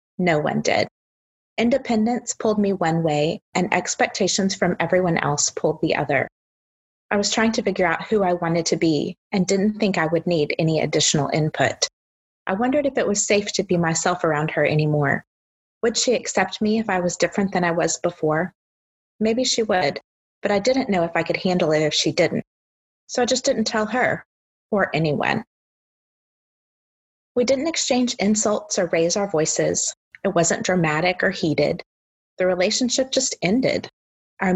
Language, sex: English, female